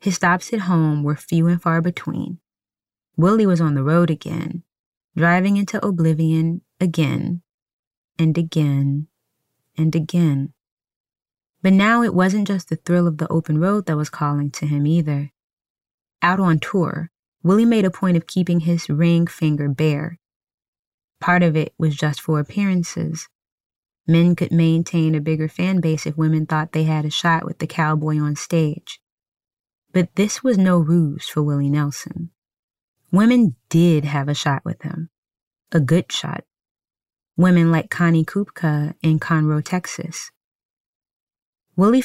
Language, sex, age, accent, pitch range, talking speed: English, female, 20-39, American, 150-175 Hz, 150 wpm